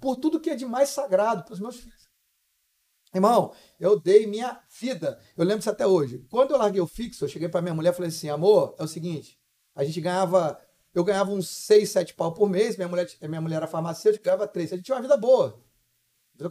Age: 40-59